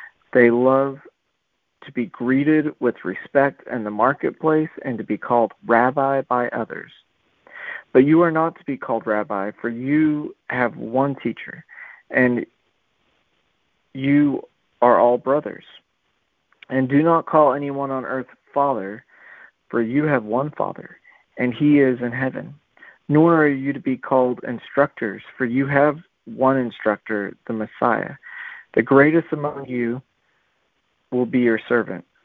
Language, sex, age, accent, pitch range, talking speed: English, male, 50-69, American, 120-140 Hz, 140 wpm